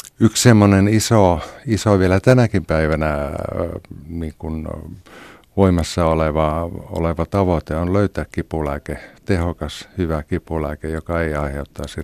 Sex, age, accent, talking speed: male, 50-69, native, 100 wpm